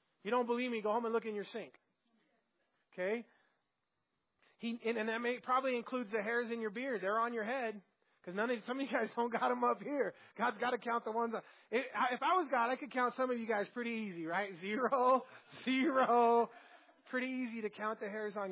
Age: 30-49